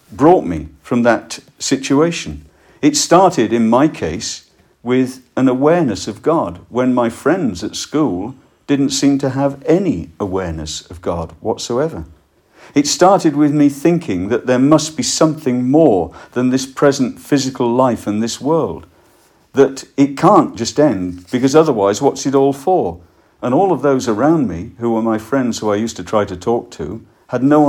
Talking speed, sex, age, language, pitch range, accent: 170 wpm, male, 50-69, English, 110-145 Hz, British